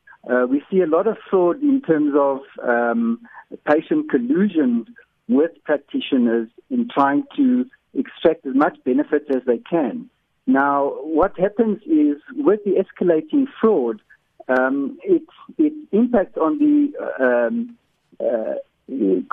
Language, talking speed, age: English, 125 wpm, 60-79